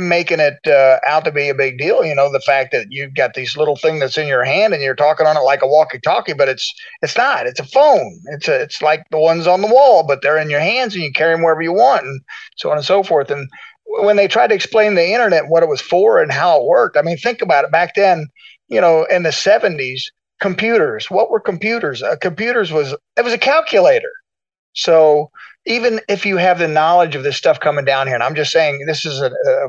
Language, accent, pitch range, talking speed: English, American, 140-205 Hz, 255 wpm